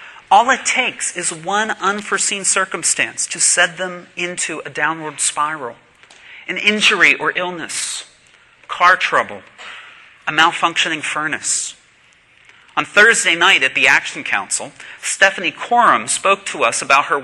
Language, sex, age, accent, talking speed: English, male, 40-59, American, 130 wpm